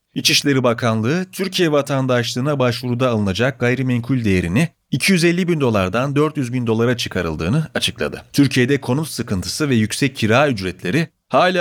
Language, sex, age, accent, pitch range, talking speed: Turkish, male, 40-59, native, 105-150 Hz, 125 wpm